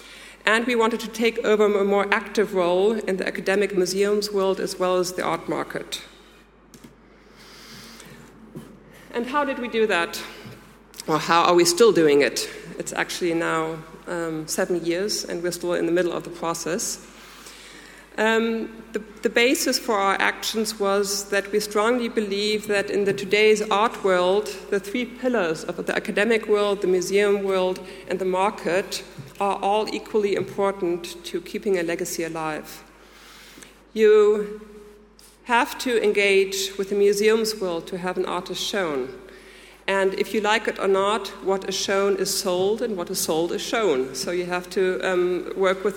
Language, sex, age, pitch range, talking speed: English, female, 50-69, 185-215 Hz, 165 wpm